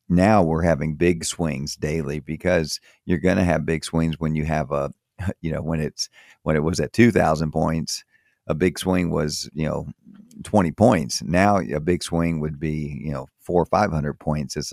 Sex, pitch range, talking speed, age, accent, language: male, 80-95 Hz, 195 wpm, 50-69, American, English